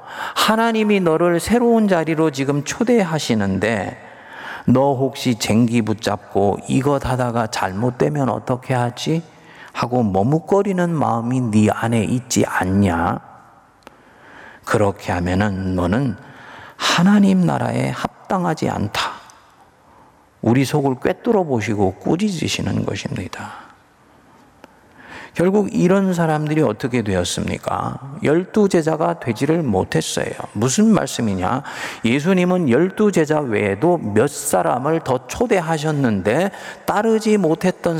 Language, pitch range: Korean, 110-175 Hz